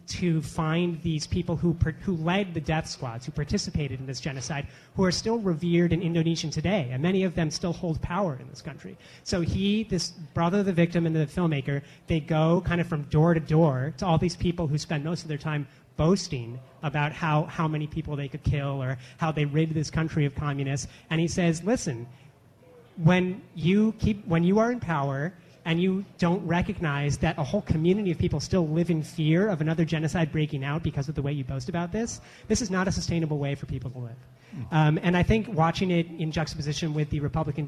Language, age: English, 30-49